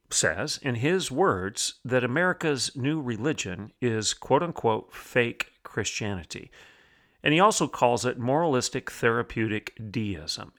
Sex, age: male, 40-59